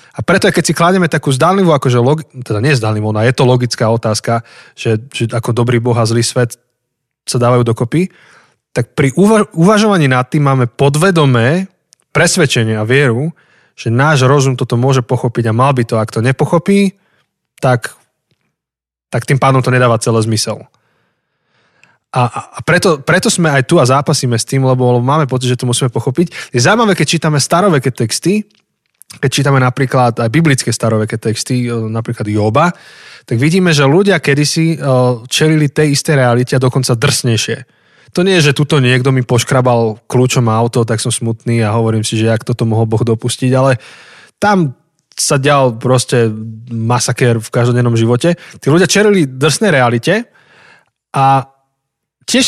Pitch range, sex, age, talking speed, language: 120-155 Hz, male, 20-39, 165 wpm, Slovak